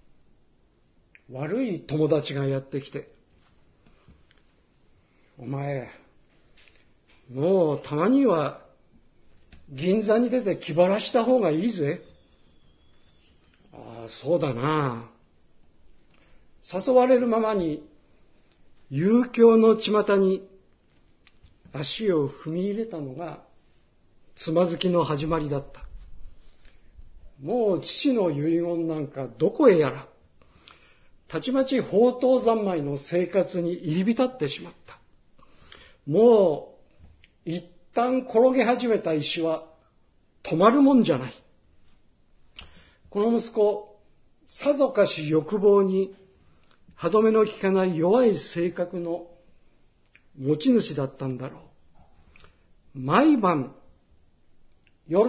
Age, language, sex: 60-79, Japanese, male